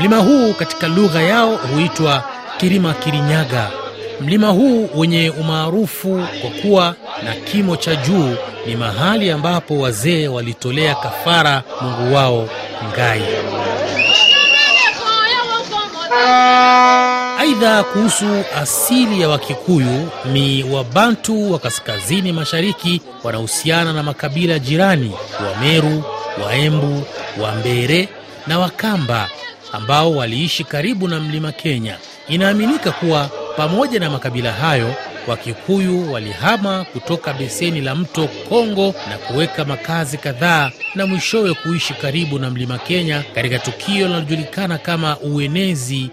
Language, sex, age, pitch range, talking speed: Swahili, male, 30-49, 135-190 Hz, 110 wpm